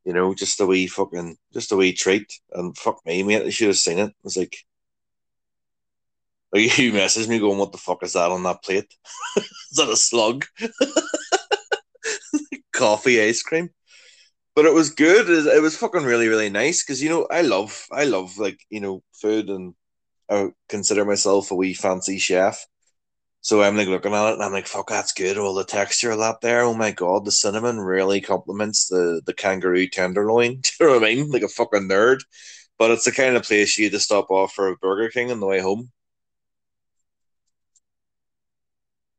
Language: English